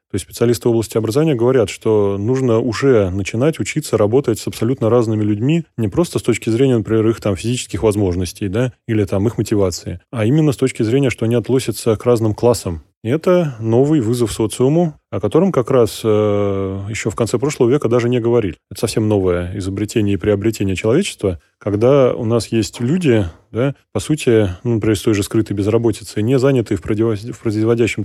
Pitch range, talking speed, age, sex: 105-125 Hz, 185 wpm, 20-39, male